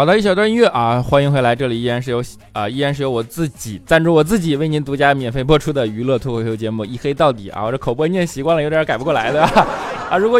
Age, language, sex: 20-39, Chinese, male